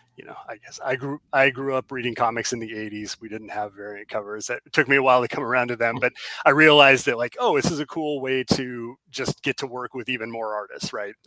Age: 30-49